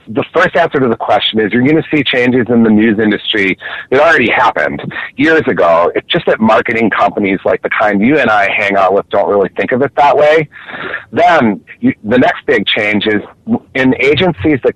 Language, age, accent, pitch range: English, 30-49, American, 120-155 Hz